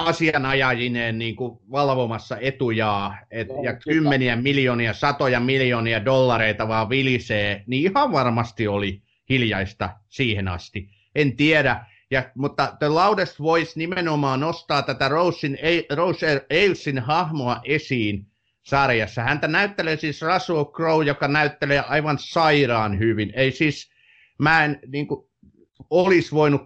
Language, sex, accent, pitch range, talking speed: Finnish, male, native, 115-145 Hz, 120 wpm